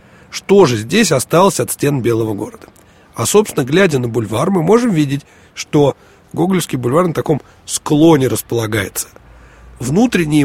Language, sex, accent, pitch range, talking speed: Russian, male, native, 115-160 Hz, 140 wpm